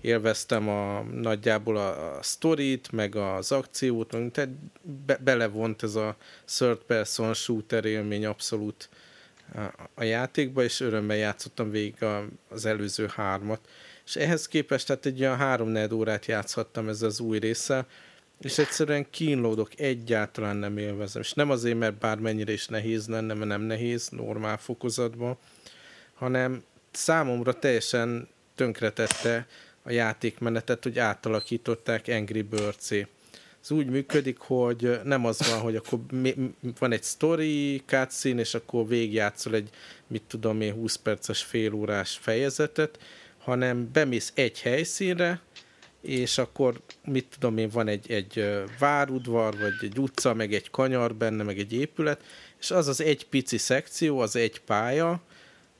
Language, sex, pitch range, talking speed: Hungarian, male, 110-135 Hz, 140 wpm